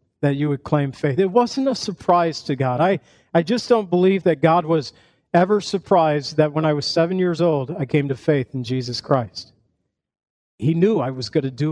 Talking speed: 215 wpm